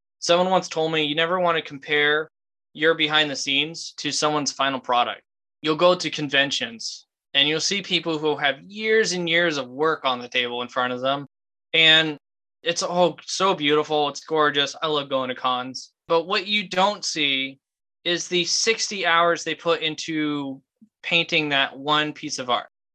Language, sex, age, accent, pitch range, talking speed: English, male, 10-29, American, 140-170 Hz, 180 wpm